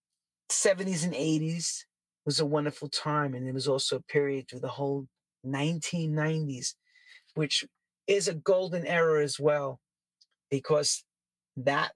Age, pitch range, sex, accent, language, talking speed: 40-59, 135-185 Hz, male, American, English, 130 wpm